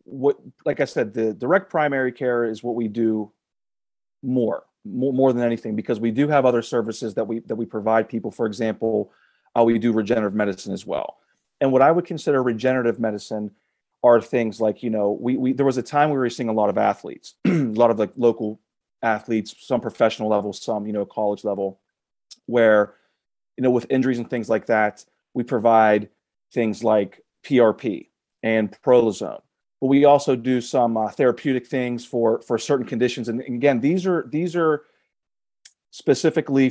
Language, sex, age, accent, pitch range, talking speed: English, male, 30-49, American, 115-130 Hz, 185 wpm